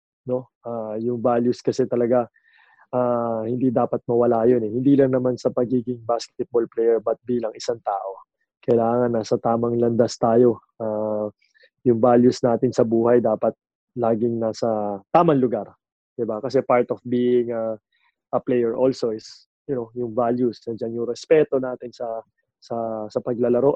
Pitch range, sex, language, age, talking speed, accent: 115-125 Hz, male, English, 20-39, 155 wpm, Filipino